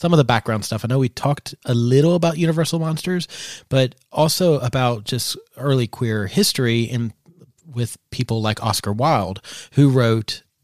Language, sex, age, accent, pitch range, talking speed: English, male, 30-49, American, 110-140 Hz, 165 wpm